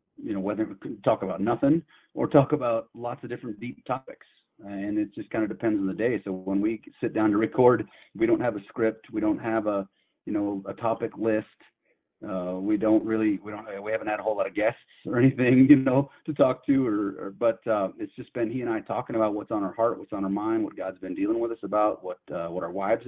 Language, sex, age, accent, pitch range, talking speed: English, male, 30-49, American, 95-130 Hz, 255 wpm